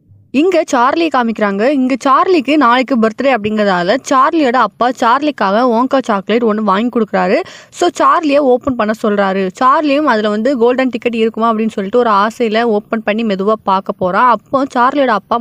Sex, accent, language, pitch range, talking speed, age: female, native, Tamil, 205-265 Hz, 150 wpm, 20-39